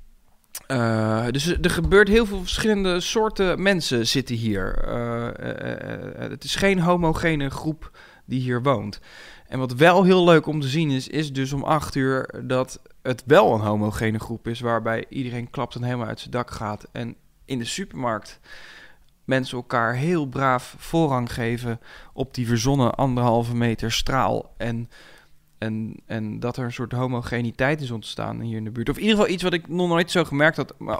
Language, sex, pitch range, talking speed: Dutch, male, 120-160 Hz, 180 wpm